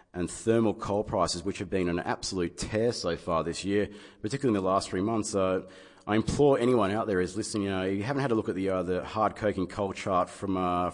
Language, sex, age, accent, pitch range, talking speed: English, male, 30-49, Australian, 90-105 Hz, 240 wpm